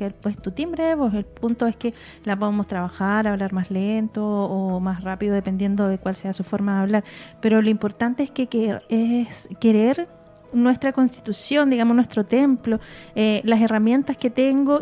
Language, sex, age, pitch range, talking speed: Spanish, female, 30-49, 200-245 Hz, 170 wpm